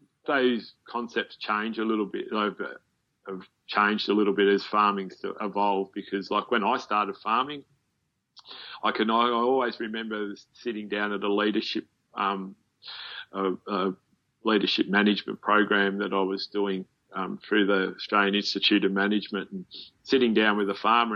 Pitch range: 100-110 Hz